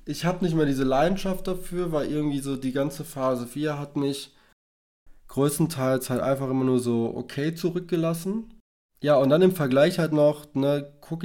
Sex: male